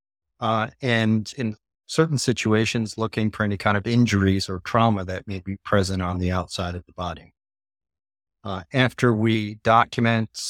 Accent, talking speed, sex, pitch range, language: American, 155 wpm, male, 95-110 Hz, English